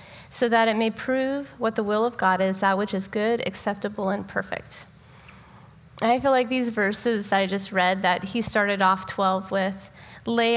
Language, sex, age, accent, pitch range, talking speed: English, female, 20-39, American, 185-210 Hz, 195 wpm